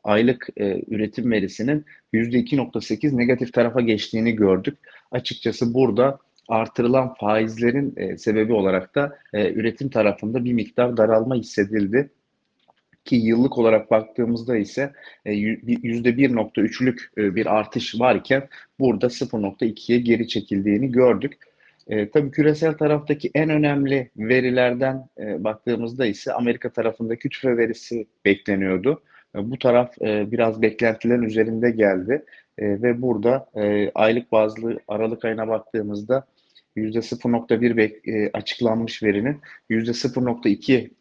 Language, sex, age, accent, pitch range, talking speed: Turkish, male, 40-59, native, 110-125 Hz, 115 wpm